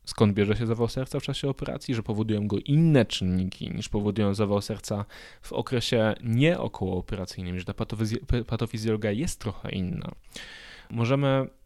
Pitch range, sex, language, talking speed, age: 100-130 Hz, male, Polish, 140 wpm, 10-29